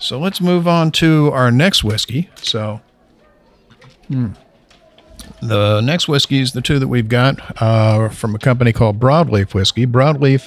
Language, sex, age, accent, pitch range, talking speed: English, male, 50-69, American, 110-135 Hz, 155 wpm